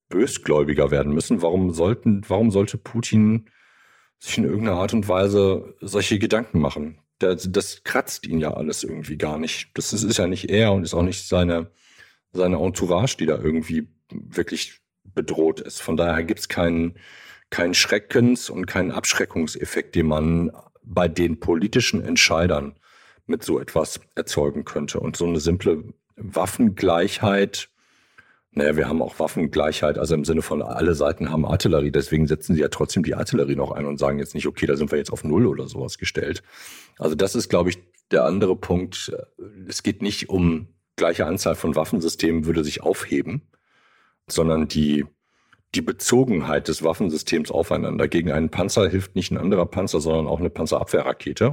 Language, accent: German, German